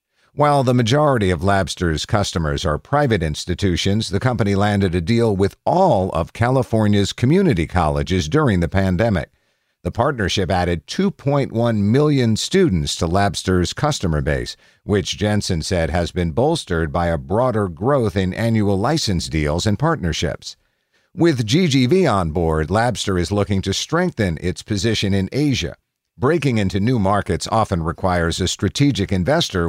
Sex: male